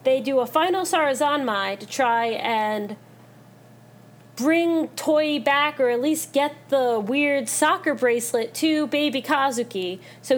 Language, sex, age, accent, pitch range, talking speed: English, female, 30-49, American, 220-300 Hz, 135 wpm